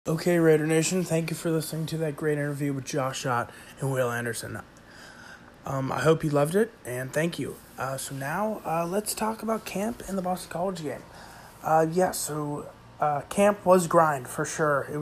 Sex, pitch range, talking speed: male, 145-165 Hz, 195 wpm